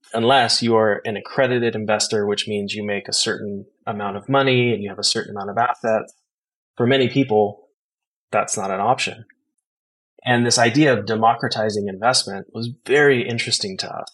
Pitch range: 105-125 Hz